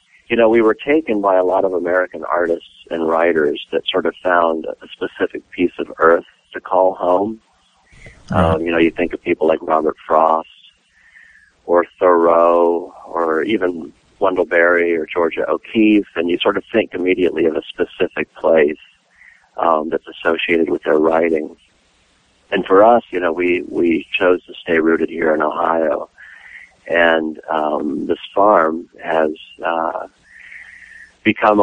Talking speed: 155 wpm